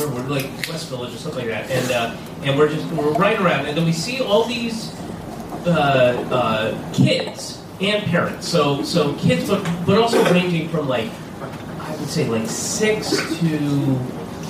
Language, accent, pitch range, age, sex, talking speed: English, American, 135-175 Hz, 30-49, male, 175 wpm